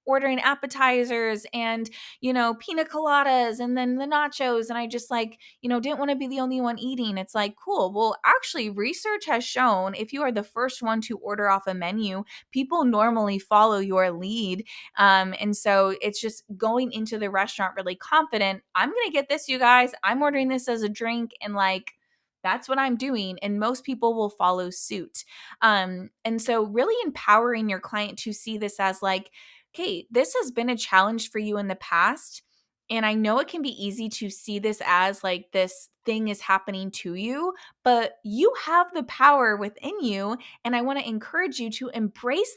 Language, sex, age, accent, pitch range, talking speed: English, female, 20-39, American, 205-265 Hz, 195 wpm